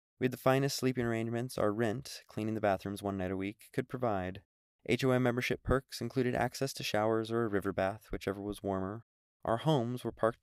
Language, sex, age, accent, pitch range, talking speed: English, male, 20-39, American, 95-120 Hz, 200 wpm